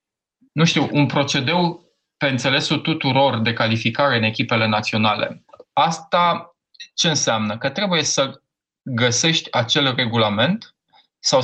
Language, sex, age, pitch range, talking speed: Romanian, male, 20-39, 120-165 Hz, 115 wpm